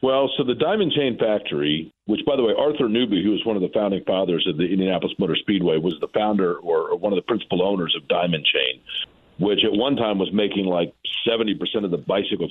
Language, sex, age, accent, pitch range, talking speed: English, male, 50-69, American, 95-115 Hz, 225 wpm